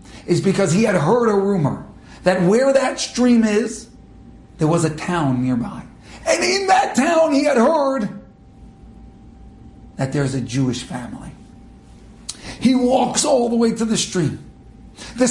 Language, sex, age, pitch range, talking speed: English, male, 50-69, 160-255 Hz, 150 wpm